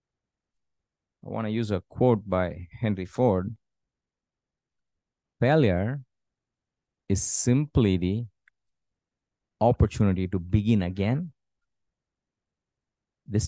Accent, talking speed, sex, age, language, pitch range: Indian, 80 wpm, male, 30-49, English, 90-115 Hz